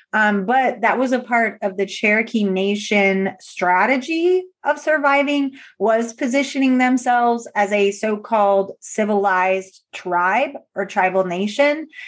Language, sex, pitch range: English, female, 200-255 Hz